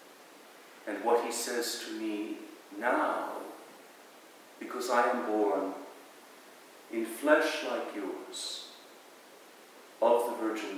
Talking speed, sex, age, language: 100 wpm, male, 50-69, English